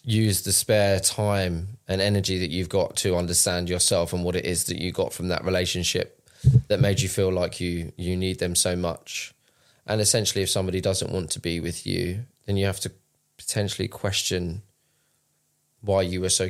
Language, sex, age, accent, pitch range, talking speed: English, male, 20-39, British, 90-100 Hz, 195 wpm